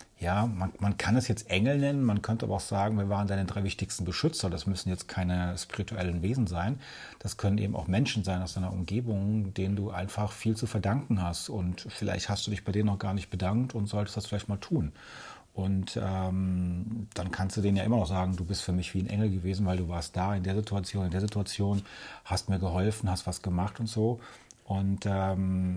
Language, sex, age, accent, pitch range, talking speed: German, male, 40-59, German, 95-115 Hz, 225 wpm